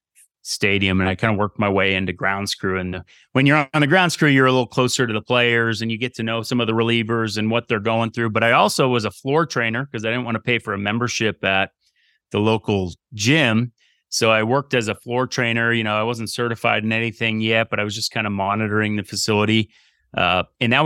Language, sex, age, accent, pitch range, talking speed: English, male, 30-49, American, 105-125 Hz, 245 wpm